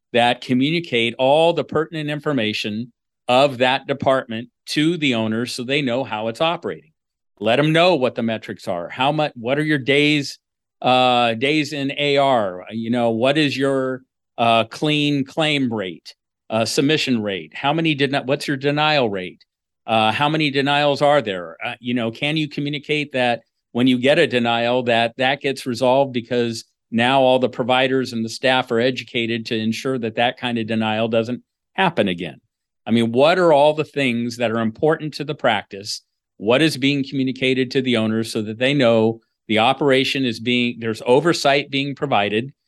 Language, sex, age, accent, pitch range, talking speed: English, male, 50-69, American, 115-145 Hz, 185 wpm